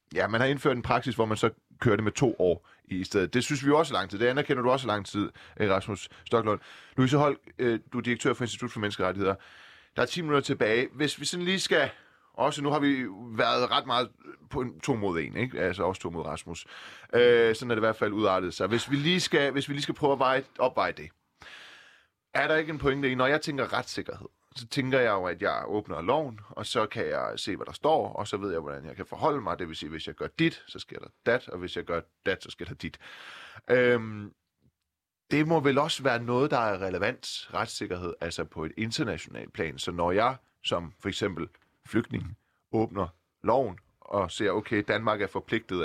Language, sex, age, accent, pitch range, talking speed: Danish, male, 30-49, native, 95-140 Hz, 230 wpm